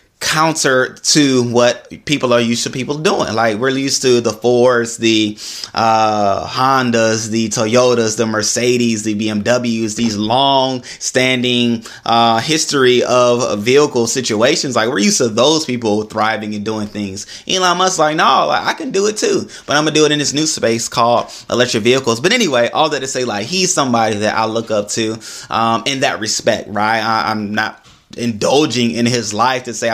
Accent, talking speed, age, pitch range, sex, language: American, 185 wpm, 20-39, 110-130 Hz, male, English